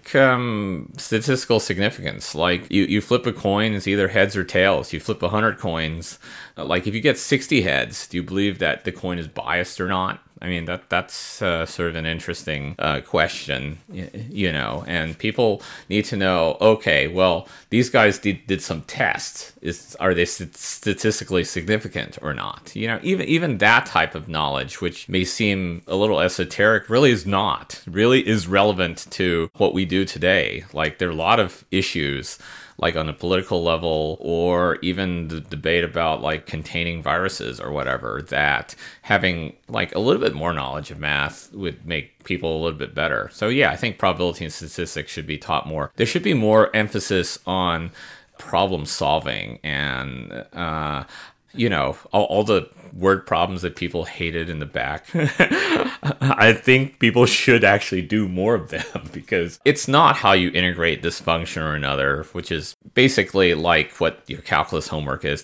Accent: American